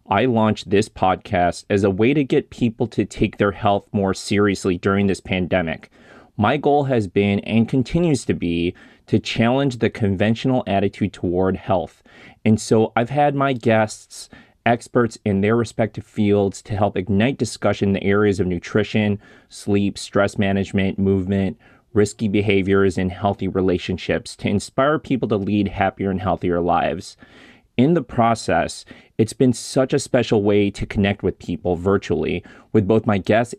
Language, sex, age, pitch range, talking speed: English, male, 30-49, 95-115 Hz, 160 wpm